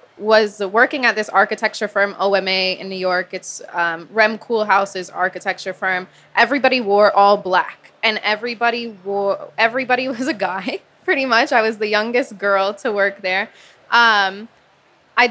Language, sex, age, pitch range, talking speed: English, female, 20-39, 195-240 Hz, 155 wpm